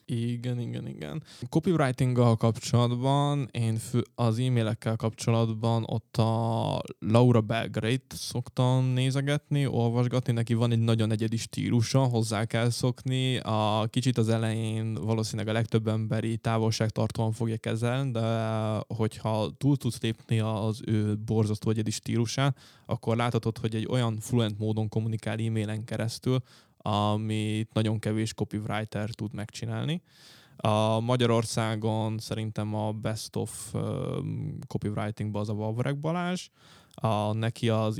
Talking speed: 125 wpm